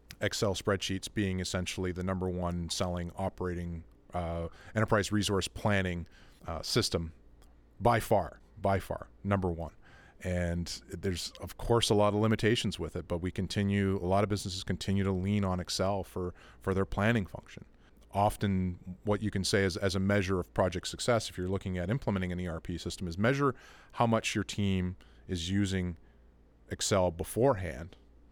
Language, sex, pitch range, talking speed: English, male, 90-105 Hz, 165 wpm